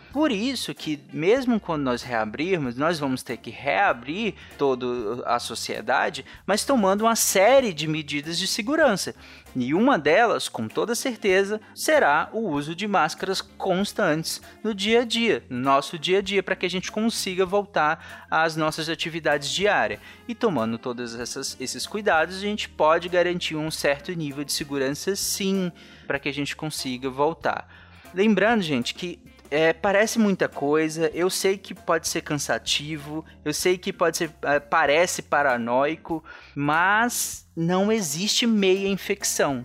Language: Portuguese